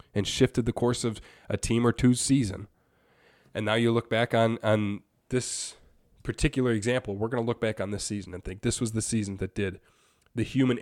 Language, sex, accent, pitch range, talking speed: English, male, American, 110-130 Hz, 210 wpm